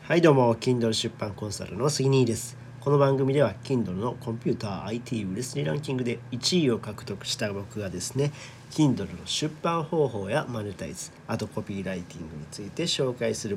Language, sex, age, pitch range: Japanese, male, 40-59, 115-145 Hz